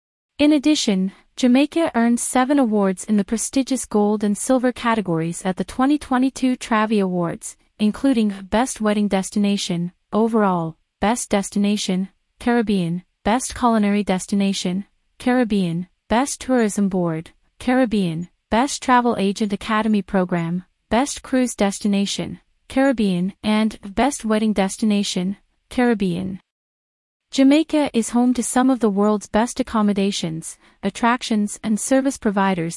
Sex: female